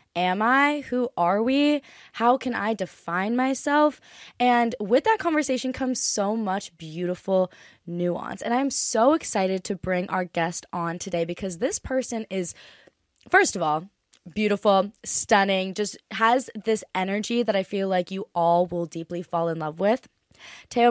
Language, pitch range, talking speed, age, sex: English, 180-235 Hz, 160 wpm, 20-39, female